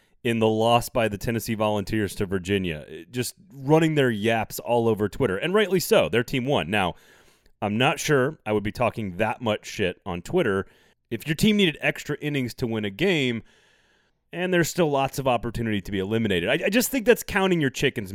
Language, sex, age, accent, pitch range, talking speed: English, male, 30-49, American, 110-150 Hz, 205 wpm